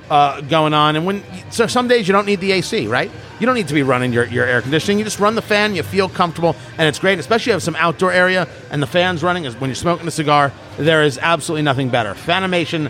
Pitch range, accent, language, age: 145-215 Hz, American, English, 50-69